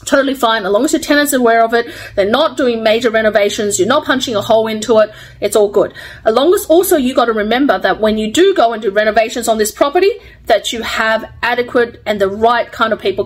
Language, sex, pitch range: English, female, 210-285 Hz